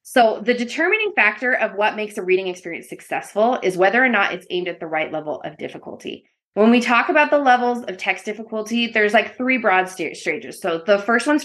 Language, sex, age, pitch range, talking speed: English, female, 20-39, 185-245 Hz, 215 wpm